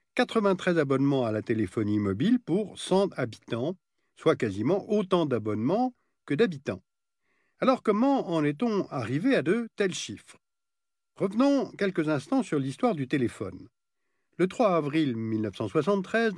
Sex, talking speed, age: male, 130 wpm, 50-69